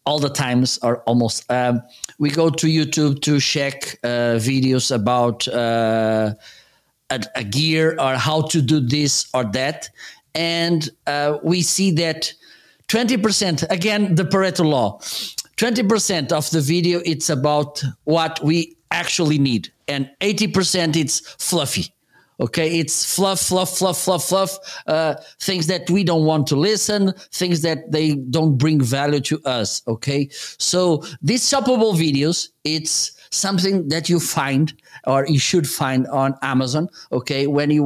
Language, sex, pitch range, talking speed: English, male, 130-165 Hz, 145 wpm